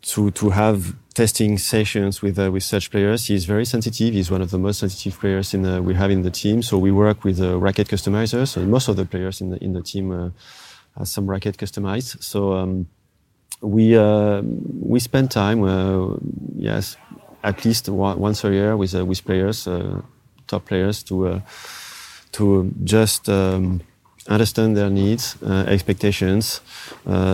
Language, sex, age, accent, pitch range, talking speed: English, male, 30-49, French, 95-105 Hz, 180 wpm